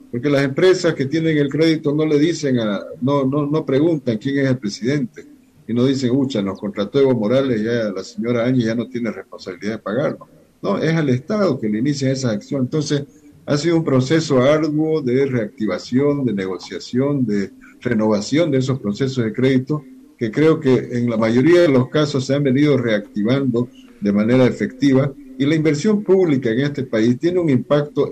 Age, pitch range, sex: 50-69, 115-150 Hz, male